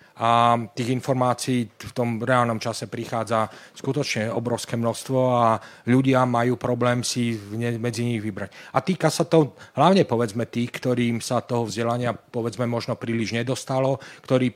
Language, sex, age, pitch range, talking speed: Slovak, male, 40-59, 120-135 Hz, 145 wpm